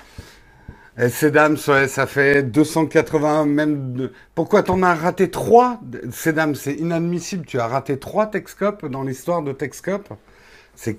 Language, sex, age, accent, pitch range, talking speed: French, male, 60-79, French, 130-170 Hz, 155 wpm